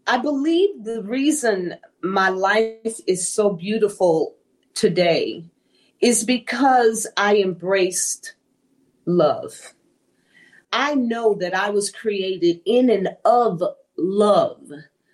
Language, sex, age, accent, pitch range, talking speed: English, female, 40-59, American, 195-280 Hz, 100 wpm